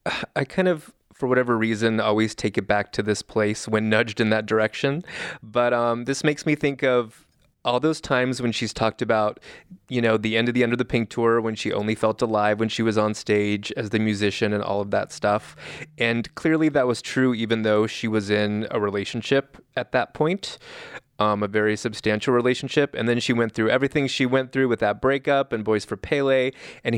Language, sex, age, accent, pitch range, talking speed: English, male, 20-39, American, 110-125 Hz, 215 wpm